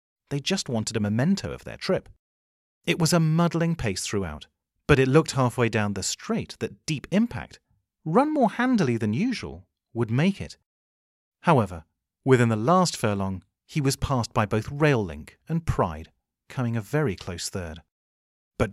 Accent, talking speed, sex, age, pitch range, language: British, 165 wpm, male, 40-59, 95-150 Hz, English